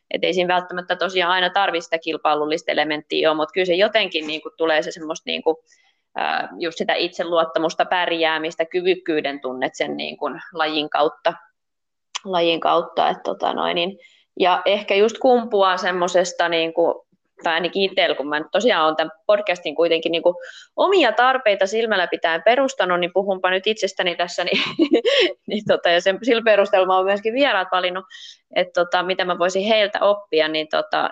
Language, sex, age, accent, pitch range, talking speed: Finnish, female, 20-39, native, 160-190 Hz, 160 wpm